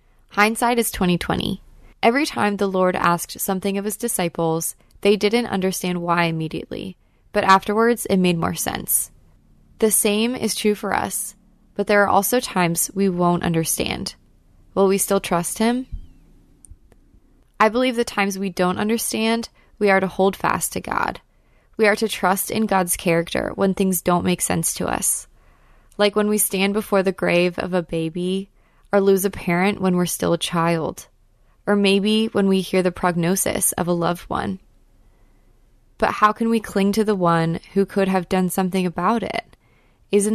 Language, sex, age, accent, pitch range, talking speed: English, female, 20-39, American, 175-210 Hz, 175 wpm